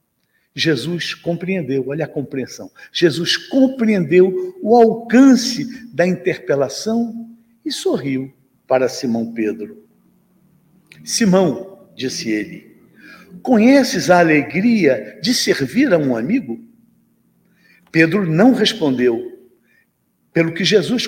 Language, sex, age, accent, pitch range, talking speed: Portuguese, male, 60-79, Brazilian, 175-240 Hz, 95 wpm